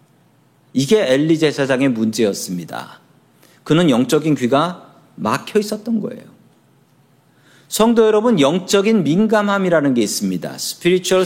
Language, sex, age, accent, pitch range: Korean, male, 40-59, native, 145-210 Hz